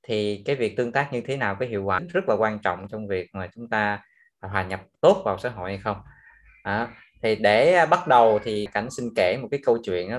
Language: Vietnamese